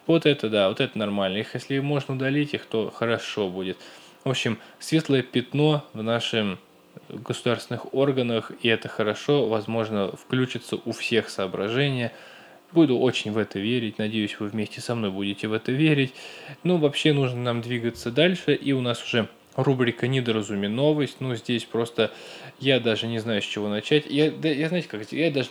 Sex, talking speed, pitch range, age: male, 170 wpm, 110-140 Hz, 20-39